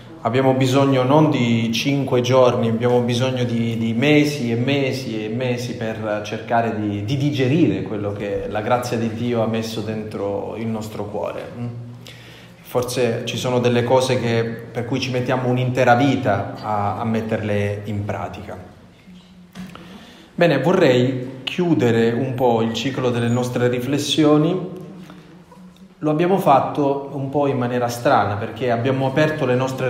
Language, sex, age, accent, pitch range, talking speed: Italian, male, 30-49, native, 115-140 Hz, 145 wpm